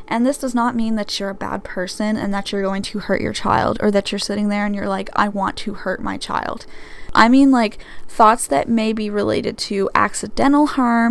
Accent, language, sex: American, English, female